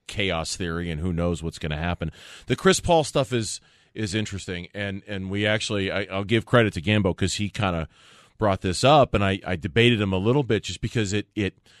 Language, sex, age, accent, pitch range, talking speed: English, male, 30-49, American, 95-115 Hz, 225 wpm